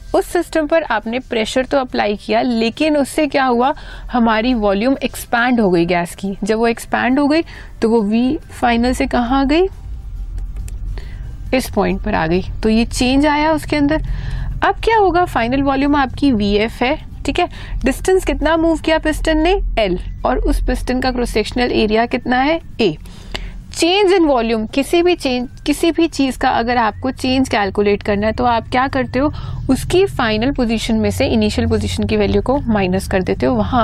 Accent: native